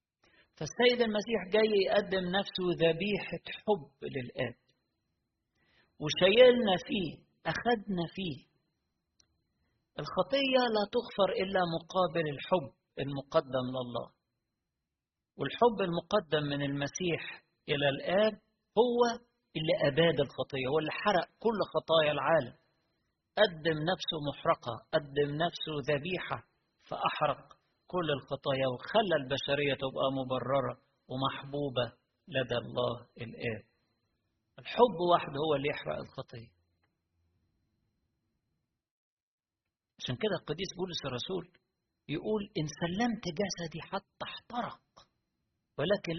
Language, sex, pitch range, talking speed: Arabic, male, 130-190 Hz, 90 wpm